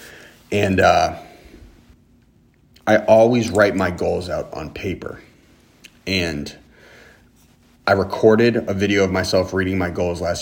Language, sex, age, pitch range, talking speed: English, male, 30-49, 90-110 Hz, 120 wpm